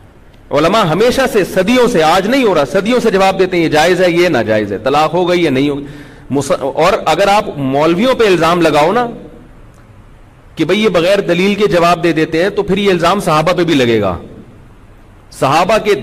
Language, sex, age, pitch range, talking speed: Urdu, male, 40-59, 155-210 Hz, 215 wpm